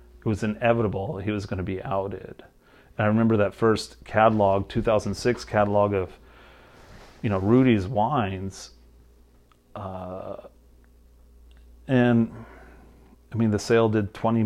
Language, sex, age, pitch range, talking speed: English, male, 30-49, 95-120 Hz, 125 wpm